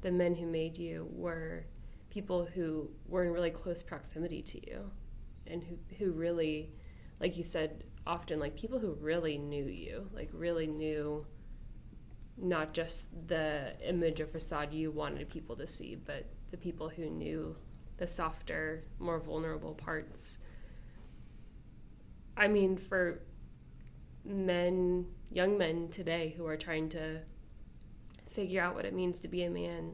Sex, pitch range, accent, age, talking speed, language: female, 155-180 Hz, American, 20-39, 145 wpm, English